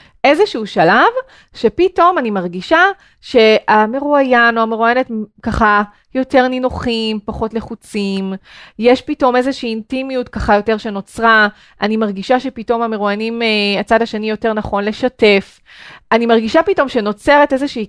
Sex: female